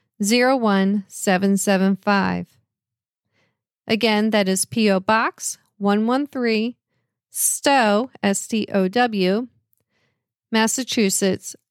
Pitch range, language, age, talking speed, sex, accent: 200-270 Hz, English, 40-59, 90 wpm, female, American